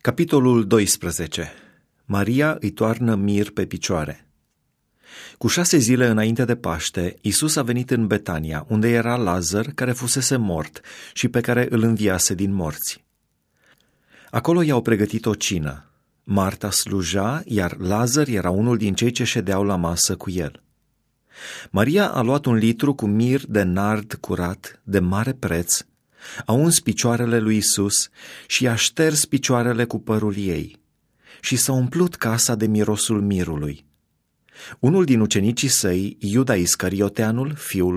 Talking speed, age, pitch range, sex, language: 140 wpm, 30-49, 95-125 Hz, male, Romanian